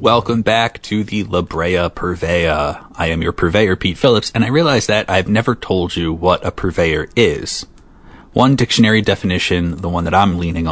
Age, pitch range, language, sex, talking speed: 30-49, 90-115 Hz, English, male, 185 wpm